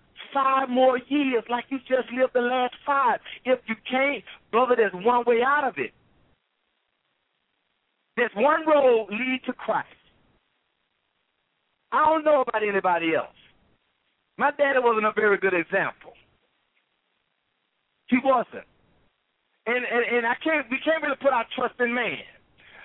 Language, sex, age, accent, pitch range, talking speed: English, male, 50-69, American, 175-265 Hz, 140 wpm